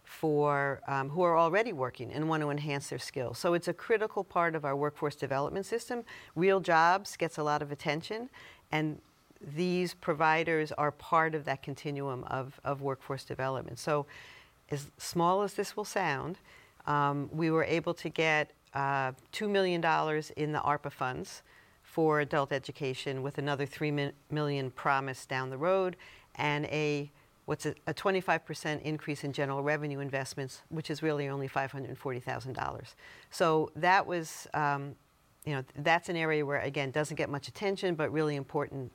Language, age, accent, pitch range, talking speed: English, 50-69, American, 140-165 Hz, 165 wpm